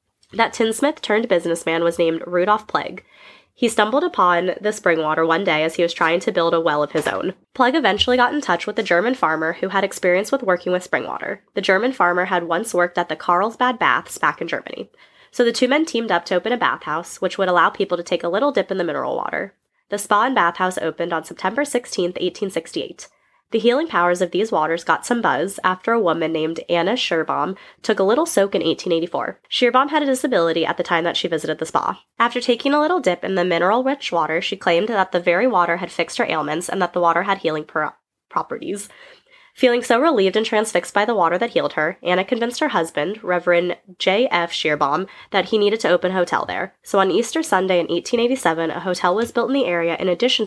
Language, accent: English, American